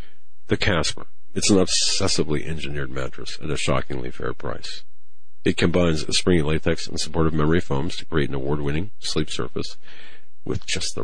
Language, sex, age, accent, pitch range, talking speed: English, male, 50-69, American, 65-90 Hz, 160 wpm